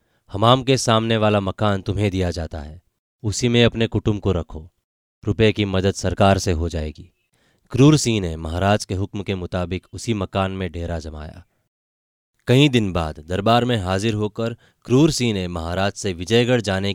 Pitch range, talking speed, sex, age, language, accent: 85-110 Hz, 175 wpm, male, 20-39, Hindi, native